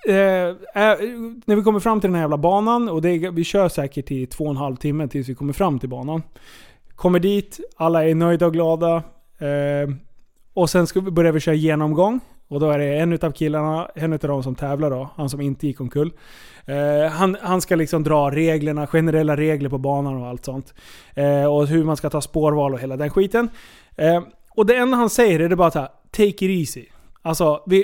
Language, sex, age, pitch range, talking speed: Swedish, male, 20-39, 150-195 Hz, 220 wpm